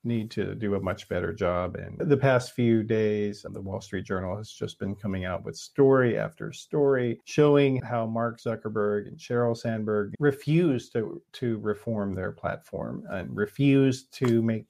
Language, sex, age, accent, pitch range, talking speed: English, male, 40-59, American, 110-160 Hz, 170 wpm